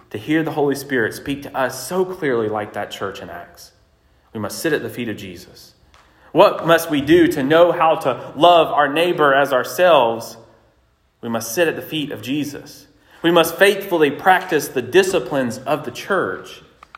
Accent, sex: American, male